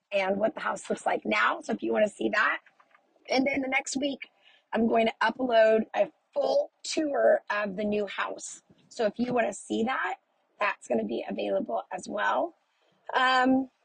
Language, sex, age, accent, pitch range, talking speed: English, female, 30-49, American, 225-300 Hz, 180 wpm